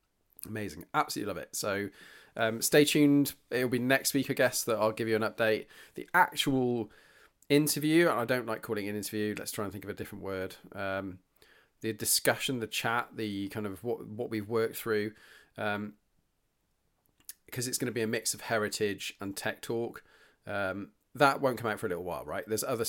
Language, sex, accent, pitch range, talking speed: English, male, British, 100-120 Hz, 200 wpm